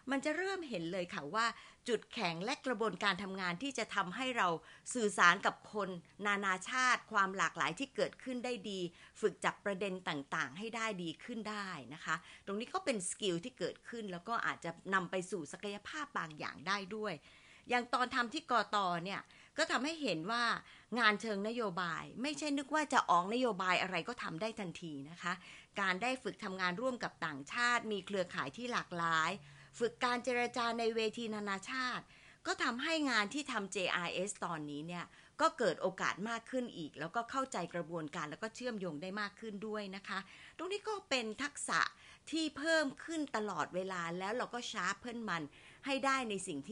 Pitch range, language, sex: 175-240 Hz, Thai, female